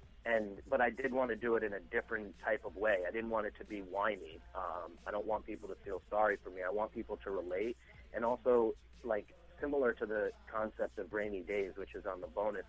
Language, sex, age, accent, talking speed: English, male, 30-49, American, 240 wpm